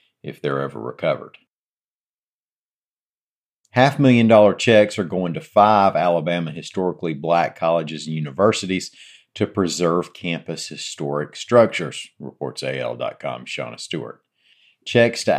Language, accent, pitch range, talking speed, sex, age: English, American, 75-95 Hz, 105 wpm, male, 50-69